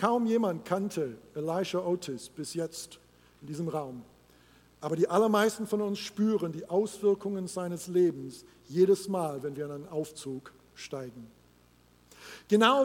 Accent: German